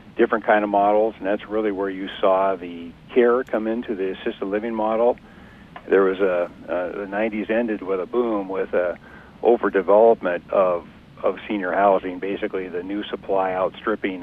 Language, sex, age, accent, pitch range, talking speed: English, male, 50-69, American, 95-110 Hz, 170 wpm